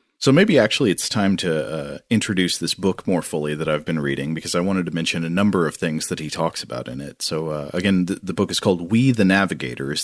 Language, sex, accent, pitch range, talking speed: English, male, American, 80-100 Hz, 245 wpm